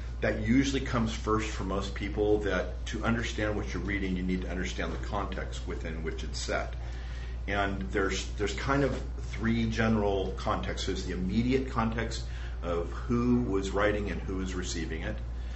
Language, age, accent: English, 40-59, American